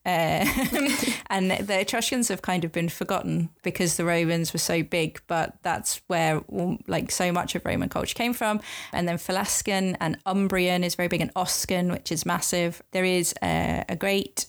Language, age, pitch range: English, 20-39, 165-185 Hz